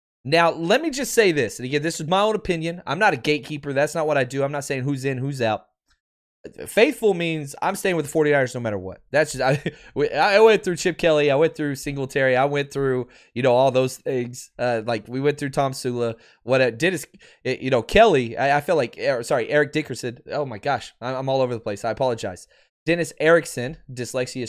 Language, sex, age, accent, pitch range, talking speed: English, male, 20-39, American, 135-210 Hz, 225 wpm